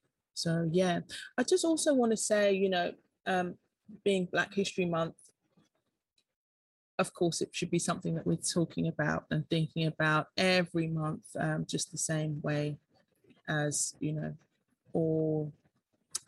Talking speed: 145 wpm